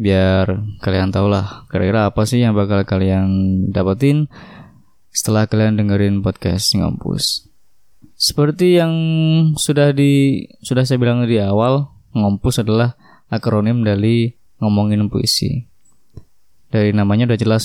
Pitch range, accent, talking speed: 105-135 Hz, native, 120 wpm